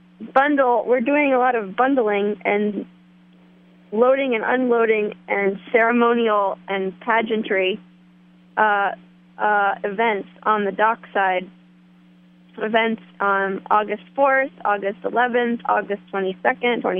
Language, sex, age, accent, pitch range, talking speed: English, female, 20-39, American, 180-230 Hz, 105 wpm